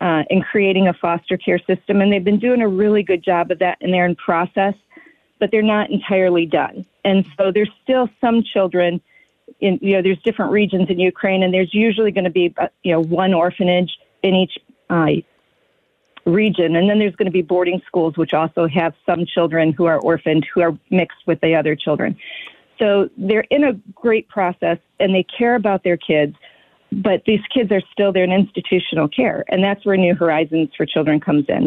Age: 40-59